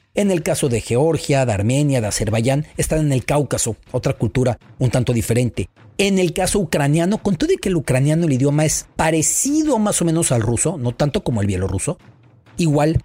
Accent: Mexican